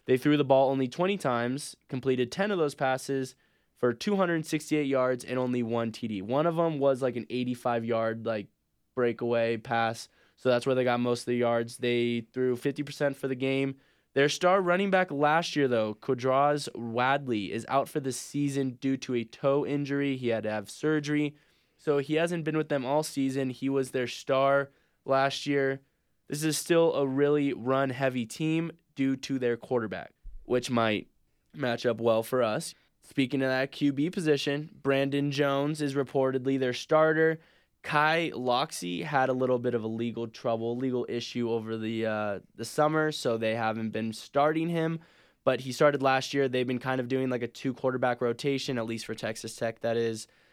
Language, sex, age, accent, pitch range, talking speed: English, male, 20-39, American, 120-145 Hz, 185 wpm